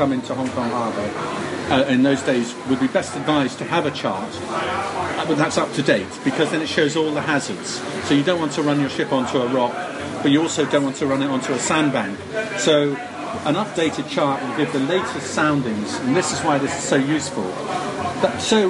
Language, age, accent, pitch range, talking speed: English, 40-59, British, 145-185 Hz, 225 wpm